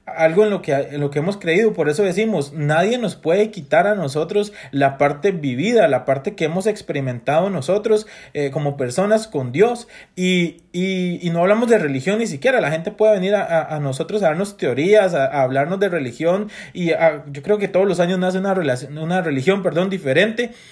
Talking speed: 210 wpm